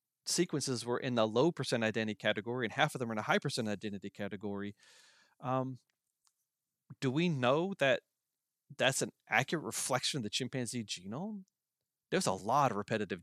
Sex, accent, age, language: male, American, 40-59, English